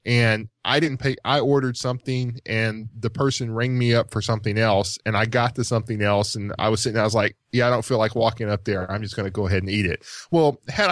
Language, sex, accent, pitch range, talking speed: English, male, American, 110-140 Hz, 265 wpm